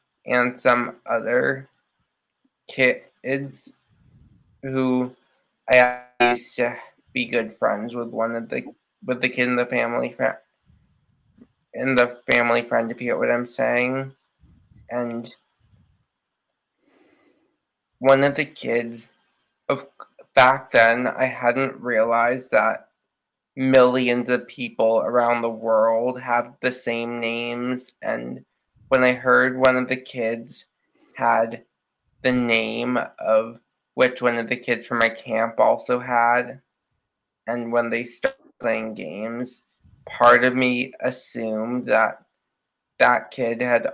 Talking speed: 120 wpm